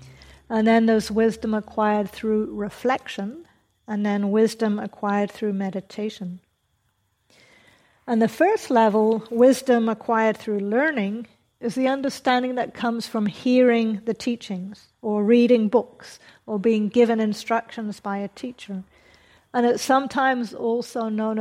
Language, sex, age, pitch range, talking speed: English, female, 50-69, 210-240 Hz, 125 wpm